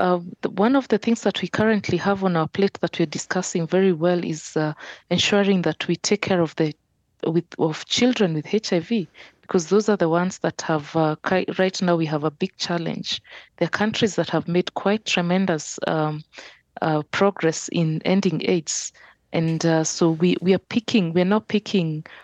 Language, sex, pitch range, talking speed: English, female, 160-195 Hz, 185 wpm